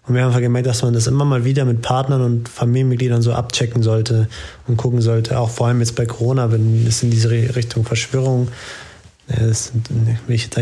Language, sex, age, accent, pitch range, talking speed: German, male, 20-39, German, 110-125 Hz, 190 wpm